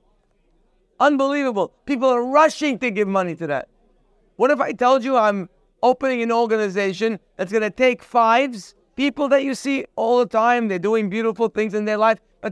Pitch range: 200-255 Hz